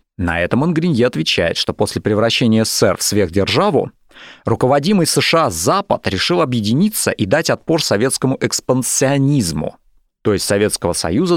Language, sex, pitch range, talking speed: Russian, male, 105-145 Hz, 130 wpm